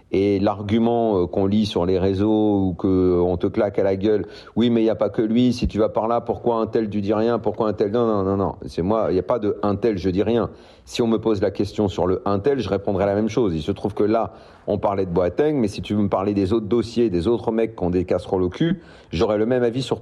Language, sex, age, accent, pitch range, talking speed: French, male, 40-59, French, 100-130 Hz, 295 wpm